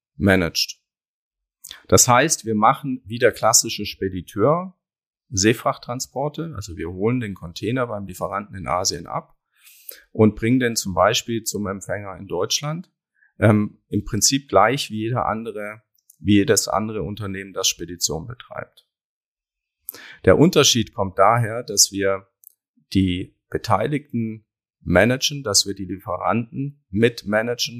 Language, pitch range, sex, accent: German, 100-125 Hz, male, German